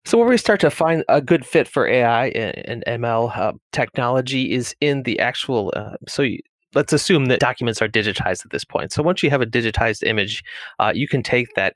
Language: English